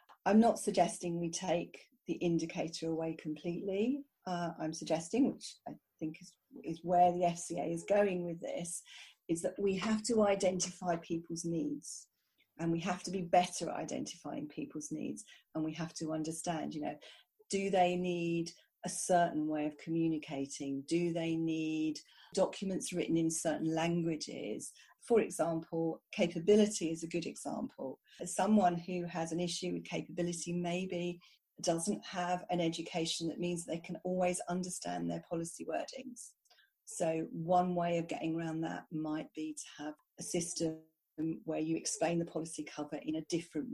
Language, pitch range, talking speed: English, 160-185 Hz, 160 wpm